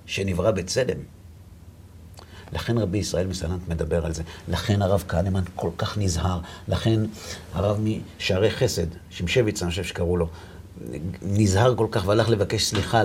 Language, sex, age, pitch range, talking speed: Hebrew, male, 50-69, 90-110 Hz, 140 wpm